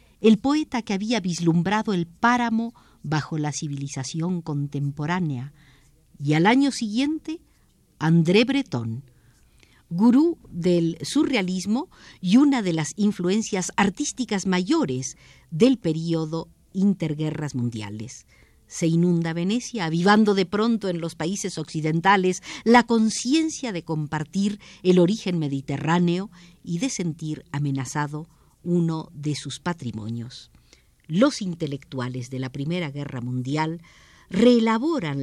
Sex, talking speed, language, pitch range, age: female, 110 wpm, Spanish, 150-215 Hz, 50-69